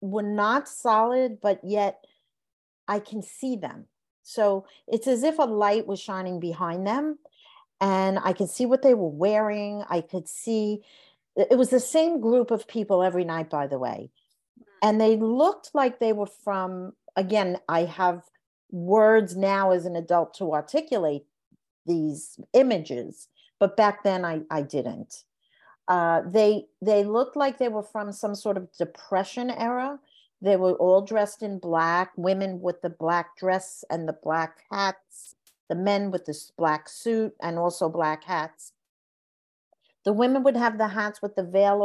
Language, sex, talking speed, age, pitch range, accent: English, female, 165 wpm, 50-69, 180-230 Hz, American